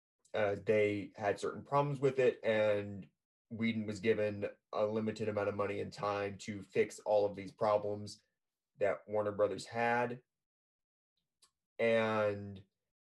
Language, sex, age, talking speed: English, male, 30-49, 135 wpm